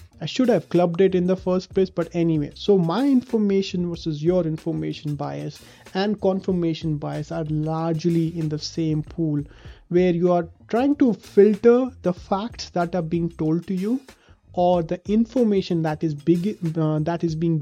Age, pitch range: 30-49, 155-185 Hz